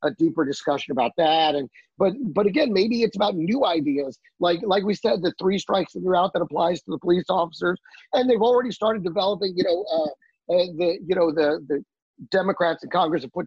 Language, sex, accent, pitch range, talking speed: English, male, American, 170-225 Hz, 210 wpm